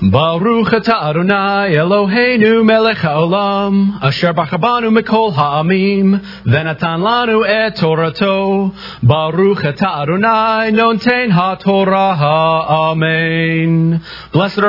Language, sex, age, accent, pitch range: English, male, 30-49, American, 140-190 Hz